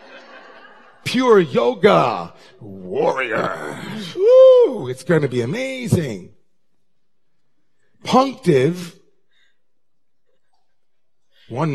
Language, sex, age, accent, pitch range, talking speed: English, male, 40-59, American, 125-175 Hz, 55 wpm